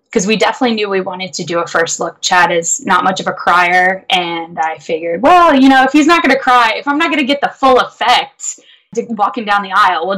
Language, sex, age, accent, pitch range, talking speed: English, female, 10-29, American, 180-230 Hz, 260 wpm